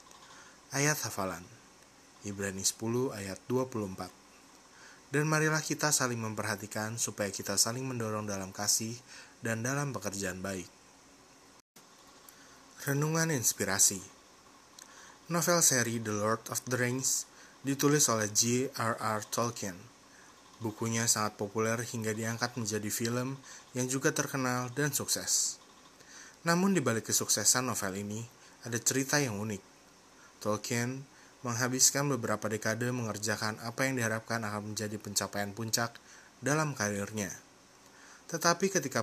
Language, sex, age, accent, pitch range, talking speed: Indonesian, male, 20-39, native, 105-130 Hz, 110 wpm